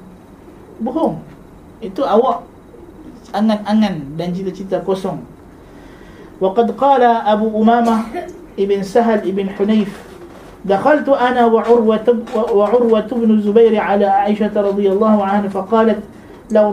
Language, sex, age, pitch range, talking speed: Malay, male, 50-69, 210-255 Hz, 95 wpm